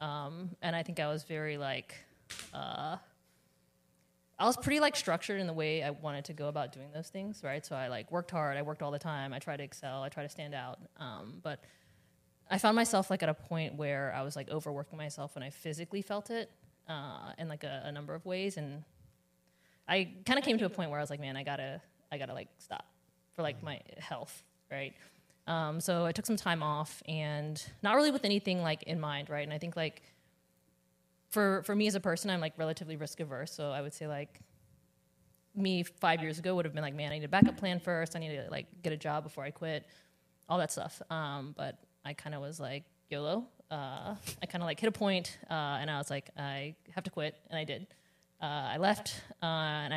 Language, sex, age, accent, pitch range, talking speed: English, female, 20-39, American, 145-180 Hz, 235 wpm